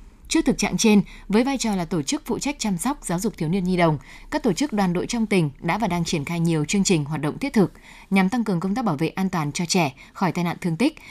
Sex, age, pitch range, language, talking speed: female, 10-29, 170-220 Hz, Vietnamese, 295 wpm